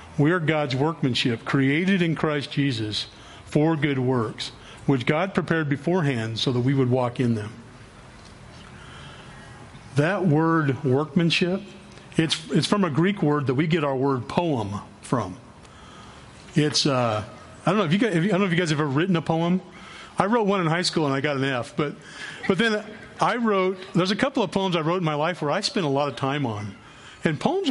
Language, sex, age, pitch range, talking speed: English, male, 40-59, 130-175 Hz, 200 wpm